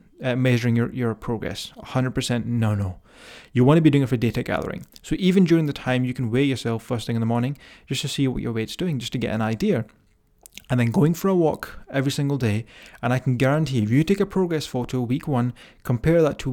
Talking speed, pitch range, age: 245 wpm, 115-140 Hz, 20-39